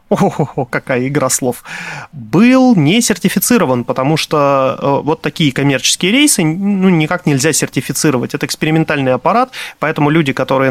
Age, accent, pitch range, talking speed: 30-49, native, 135-180 Hz, 130 wpm